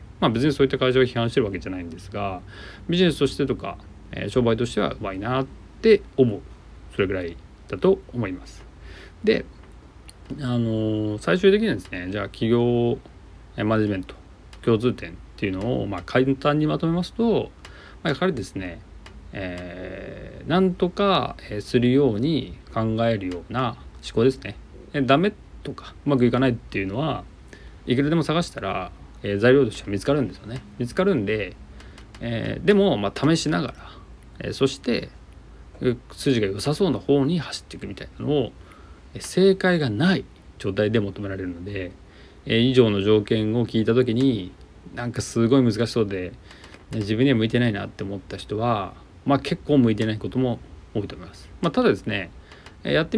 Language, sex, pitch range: Japanese, male, 95-135 Hz